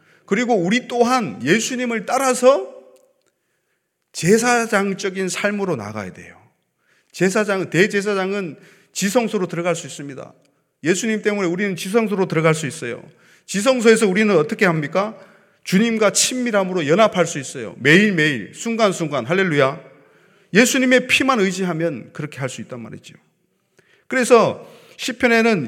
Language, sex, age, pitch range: Korean, male, 30-49, 145-205 Hz